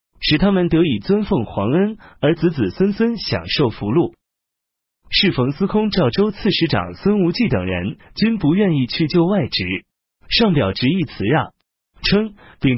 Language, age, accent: Chinese, 30-49, native